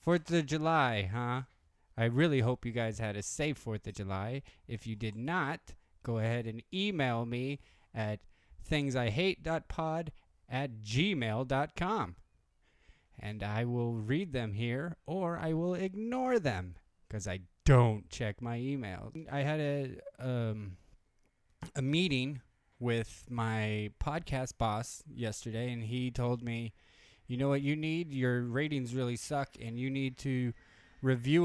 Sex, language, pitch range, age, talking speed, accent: male, English, 105-140 Hz, 20-39, 140 wpm, American